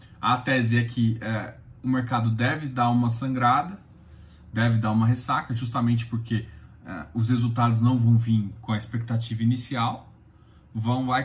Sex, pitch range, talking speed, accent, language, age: male, 115-155 Hz, 140 wpm, Brazilian, Portuguese, 20-39